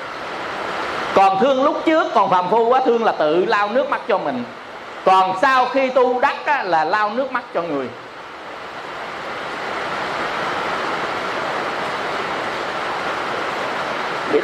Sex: male